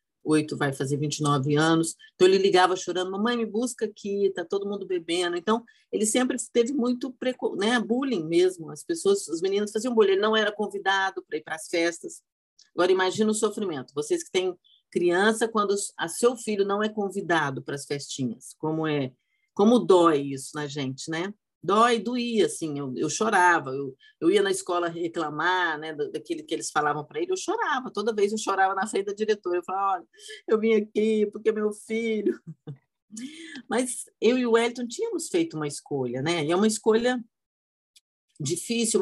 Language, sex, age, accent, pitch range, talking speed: Portuguese, female, 40-59, Brazilian, 170-245 Hz, 185 wpm